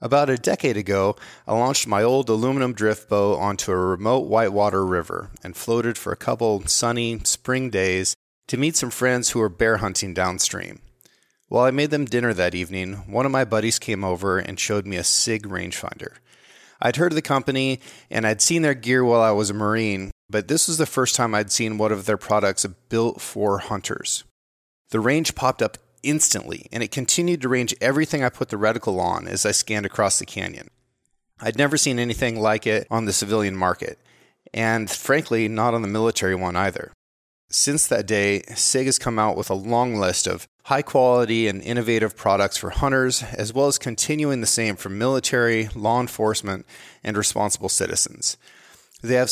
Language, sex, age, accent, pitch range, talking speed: English, male, 30-49, American, 100-130 Hz, 190 wpm